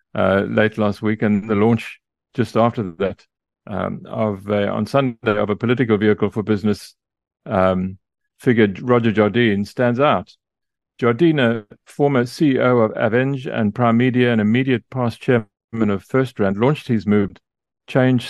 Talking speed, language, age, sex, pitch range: 150 wpm, English, 50-69, male, 105-125 Hz